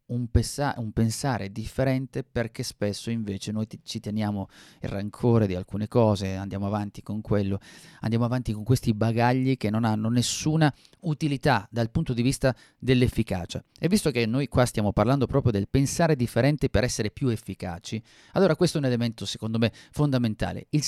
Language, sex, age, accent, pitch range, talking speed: Italian, male, 30-49, native, 105-130 Hz, 165 wpm